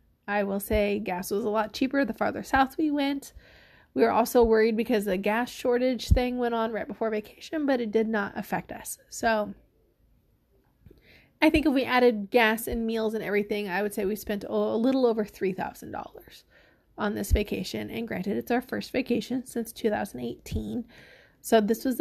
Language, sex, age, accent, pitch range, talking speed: English, female, 20-39, American, 210-245 Hz, 185 wpm